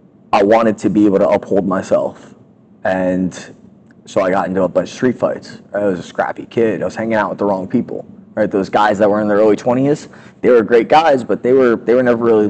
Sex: male